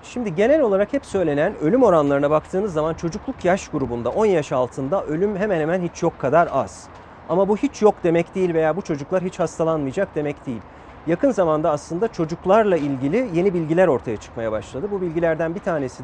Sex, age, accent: male, 40-59, native